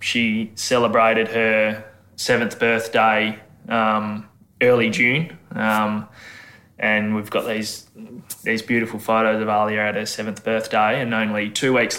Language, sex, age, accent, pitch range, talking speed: English, male, 20-39, Australian, 105-120 Hz, 130 wpm